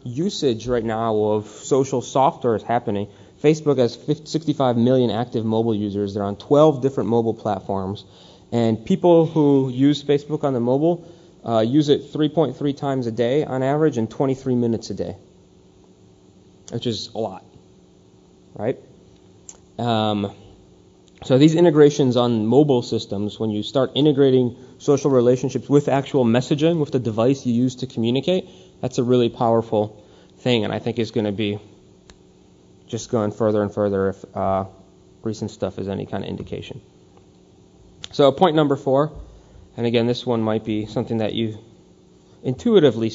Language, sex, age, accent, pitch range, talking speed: English, male, 30-49, American, 110-140 Hz, 155 wpm